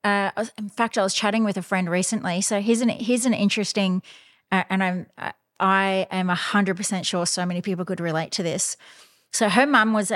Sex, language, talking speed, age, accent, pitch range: female, English, 215 wpm, 30-49, Australian, 175-210 Hz